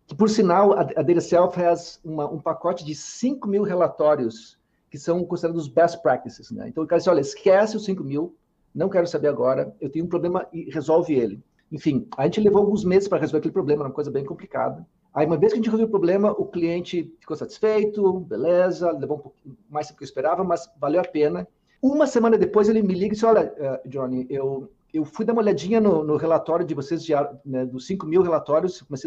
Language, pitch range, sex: Portuguese, 155-200 Hz, male